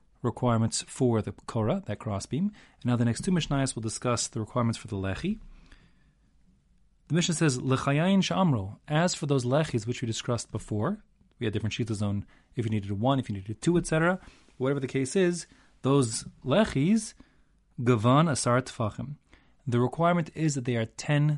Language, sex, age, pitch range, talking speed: English, male, 30-49, 115-150 Hz, 170 wpm